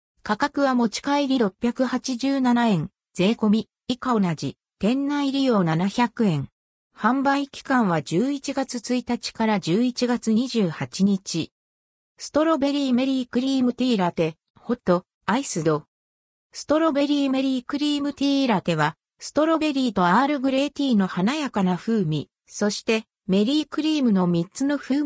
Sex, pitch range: female, 185-270 Hz